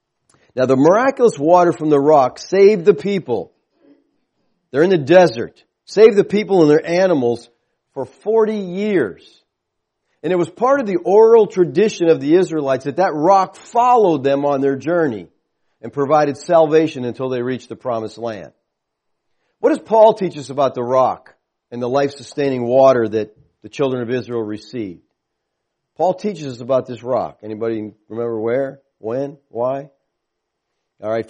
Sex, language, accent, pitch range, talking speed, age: male, English, American, 135-195 Hz, 155 wpm, 40-59